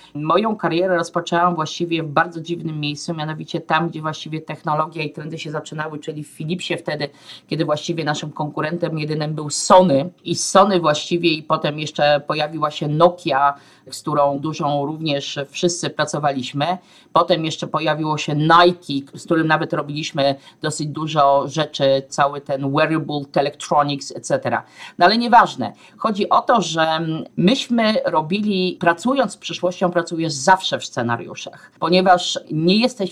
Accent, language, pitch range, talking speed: native, Polish, 150-175 Hz, 145 wpm